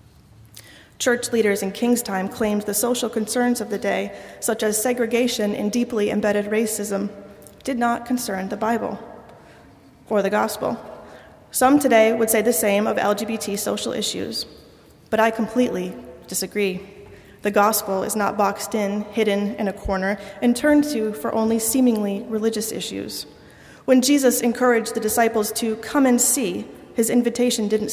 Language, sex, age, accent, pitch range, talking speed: English, female, 30-49, American, 200-235 Hz, 155 wpm